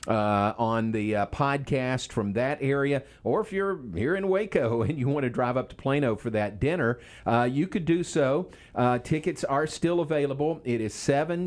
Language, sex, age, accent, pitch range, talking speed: English, male, 50-69, American, 115-140 Hz, 200 wpm